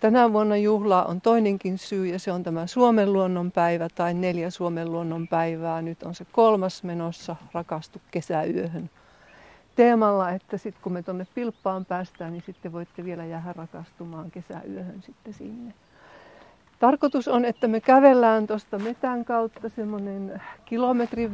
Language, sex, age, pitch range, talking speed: Finnish, female, 50-69, 175-215 Hz, 140 wpm